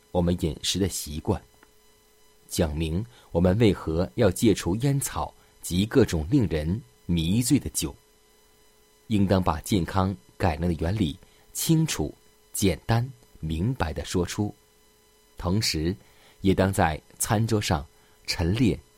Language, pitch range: Chinese, 80-100 Hz